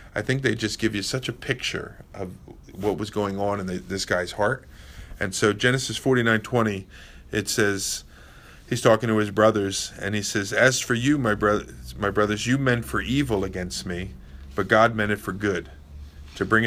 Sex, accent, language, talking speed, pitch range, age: male, American, English, 190 wpm, 95-115 Hz, 40-59